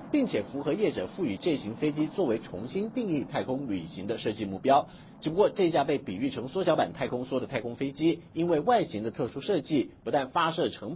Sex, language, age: male, Chinese, 50-69